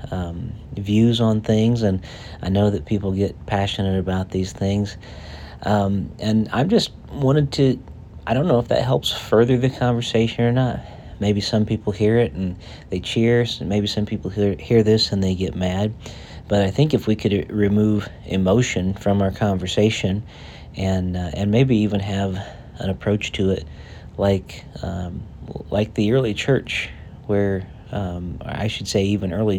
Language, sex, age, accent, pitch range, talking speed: English, male, 40-59, American, 95-110 Hz, 170 wpm